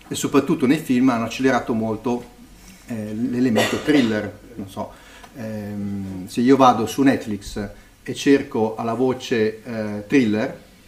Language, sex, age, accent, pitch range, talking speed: Italian, male, 40-59, native, 105-130 Hz, 130 wpm